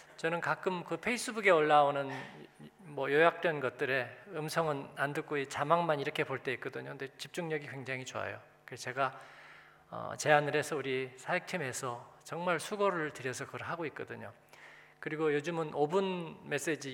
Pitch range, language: 130-170 Hz, Korean